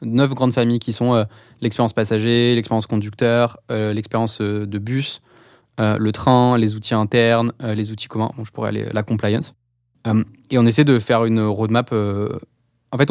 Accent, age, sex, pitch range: French, 20-39, male, 110-130 Hz